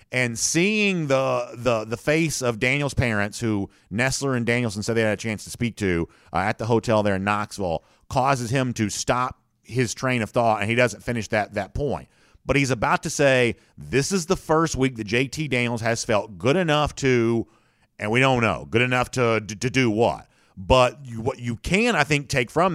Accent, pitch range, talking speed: American, 115-150 Hz, 215 wpm